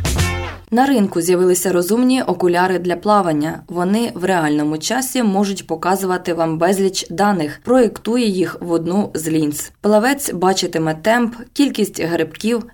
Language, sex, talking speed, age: Ukrainian, female, 125 wpm, 20-39